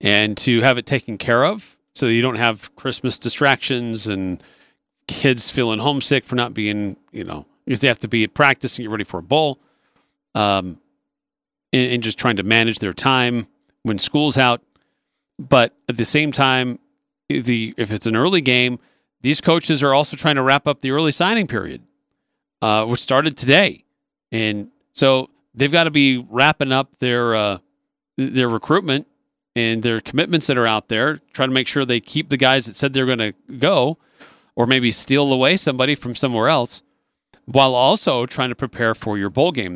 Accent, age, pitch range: American, 40-59, 115-140 Hz